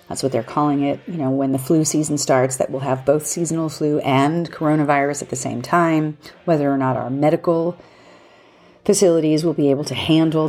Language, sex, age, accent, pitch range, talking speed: English, female, 40-59, American, 135-160 Hz, 200 wpm